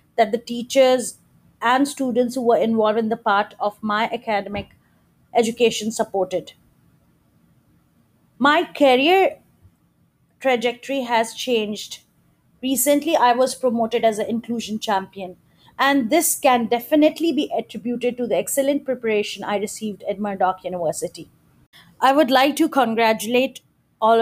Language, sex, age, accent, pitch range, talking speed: English, female, 30-49, Indian, 205-250 Hz, 125 wpm